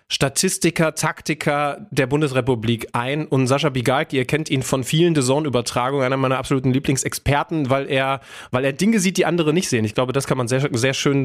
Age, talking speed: 30-49, 190 wpm